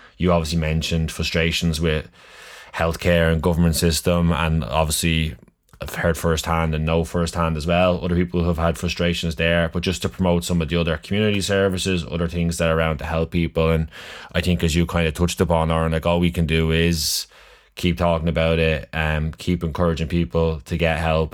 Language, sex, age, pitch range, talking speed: English, male, 20-39, 80-85 Hz, 200 wpm